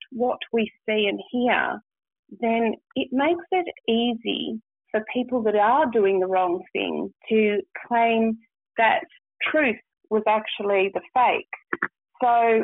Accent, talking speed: Australian, 130 wpm